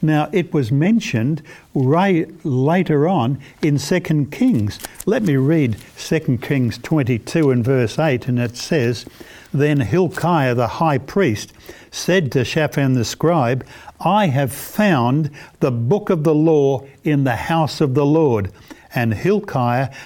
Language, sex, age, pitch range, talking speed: English, male, 60-79, 130-175 Hz, 145 wpm